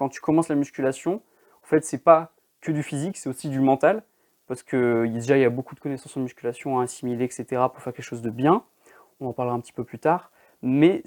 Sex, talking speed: male, 245 wpm